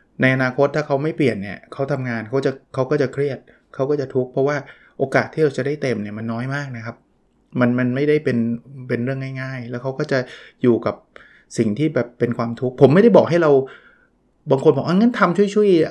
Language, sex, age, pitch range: Thai, male, 20-39, 125-150 Hz